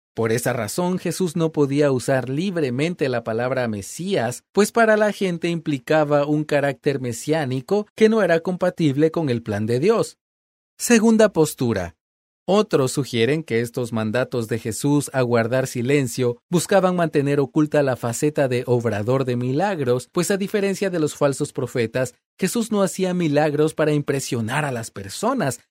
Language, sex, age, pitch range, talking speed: Spanish, male, 30-49, 125-180 Hz, 150 wpm